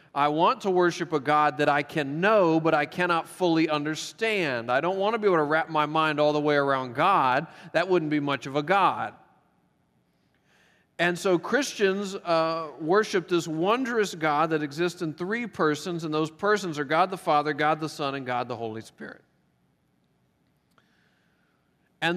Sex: male